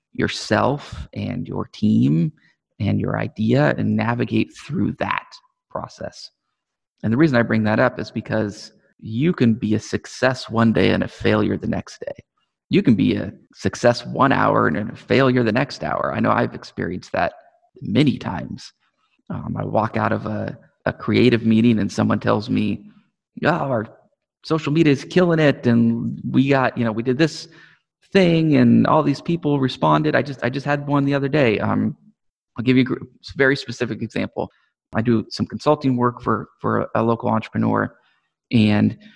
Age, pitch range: 30-49, 110-140 Hz